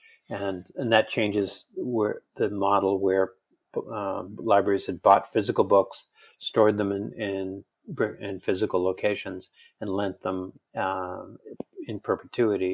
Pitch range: 95-110 Hz